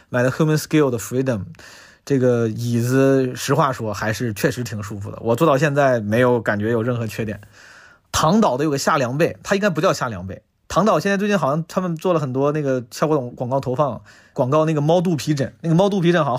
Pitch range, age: 120-165 Hz, 20-39